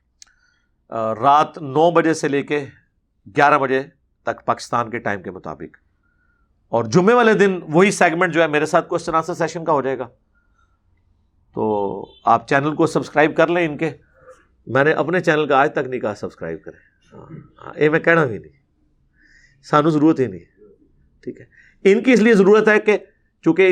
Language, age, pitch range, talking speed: Urdu, 50-69, 130-170 Hz, 175 wpm